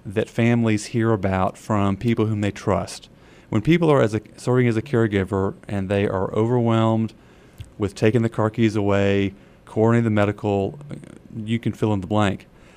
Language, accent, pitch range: English, American, 95-120 Hz